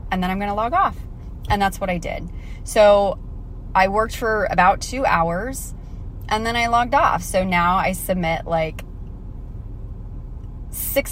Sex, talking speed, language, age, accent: female, 160 wpm, English, 20-39, American